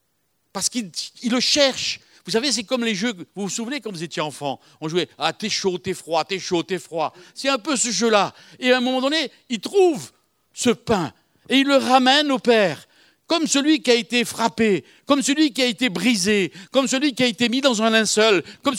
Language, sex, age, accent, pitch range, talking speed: French, male, 60-79, French, 190-265 Hz, 225 wpm